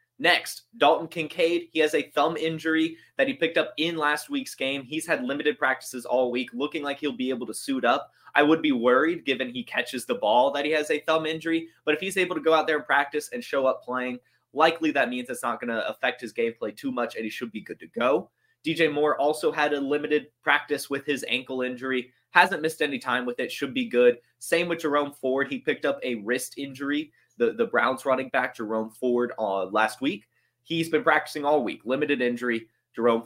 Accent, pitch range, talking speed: American, 125-160 Hz, 225 wpm